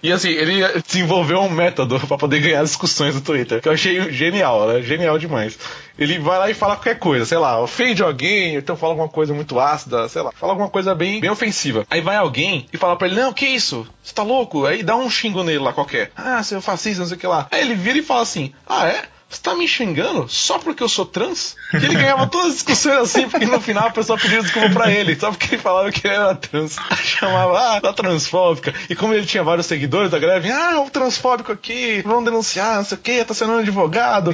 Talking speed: 250 wpm